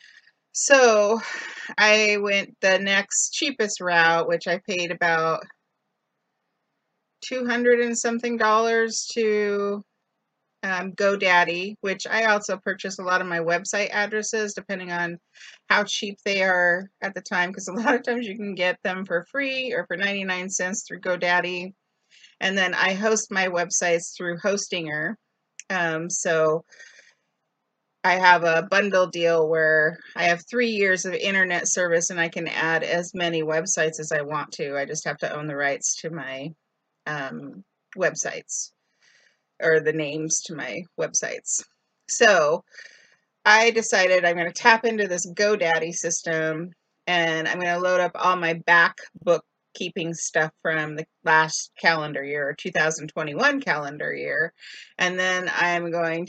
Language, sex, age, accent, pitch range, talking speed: English, female, 40-59, American, 165-205 Hz, 150 wpm